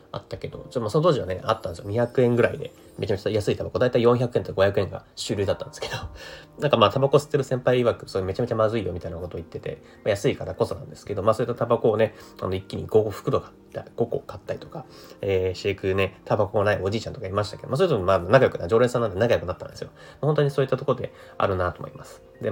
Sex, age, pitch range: male, 30-49, 95-135 Hz